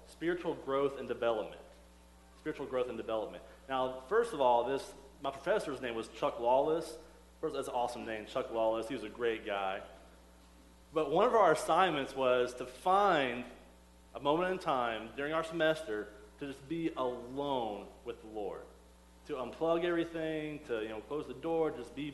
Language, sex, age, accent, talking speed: English, male, 30-49, American, 170 wpm